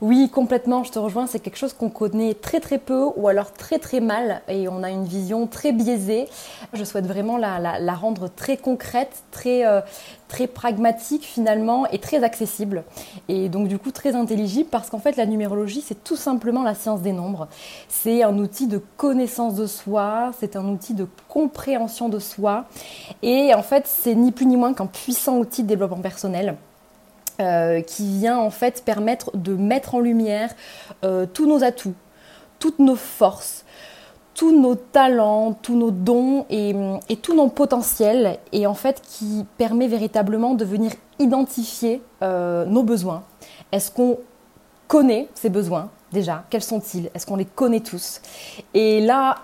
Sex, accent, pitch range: female, French, 200-250 Hz